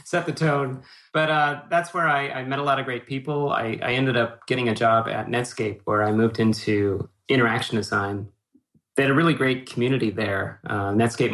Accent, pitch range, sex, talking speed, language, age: American, 105-125 Hz, male, 205 wpm, English, 30-49